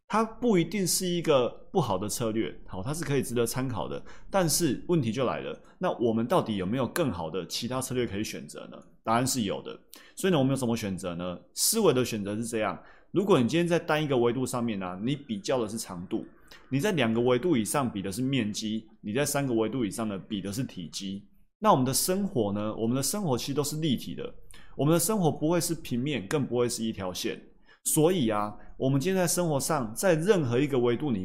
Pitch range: 110-155 Hz